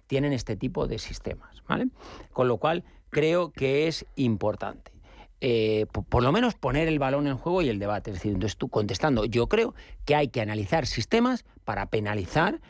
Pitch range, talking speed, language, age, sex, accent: 110-150 Hz, 190 wpm, Spanish, 40-59, male, Spanish